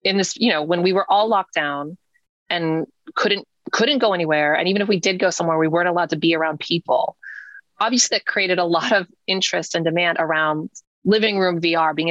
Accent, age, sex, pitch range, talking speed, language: American, 20-39, female, 165-205 Hz, 215 wpm, English